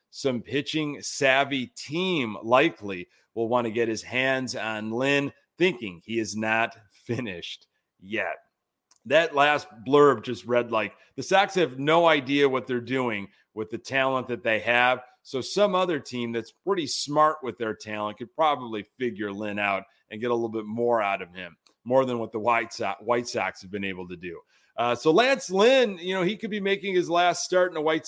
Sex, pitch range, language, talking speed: male, 115-155 Hz, English, 195 wpm